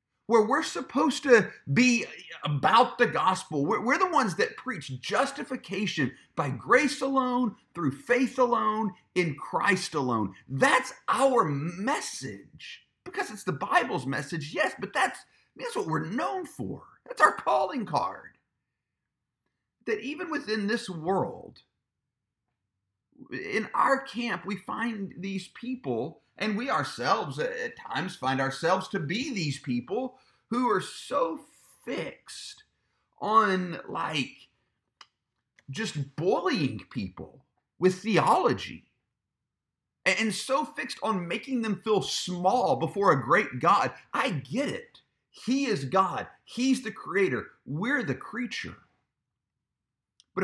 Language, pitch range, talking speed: English, 160-250 Hz, 125 wpm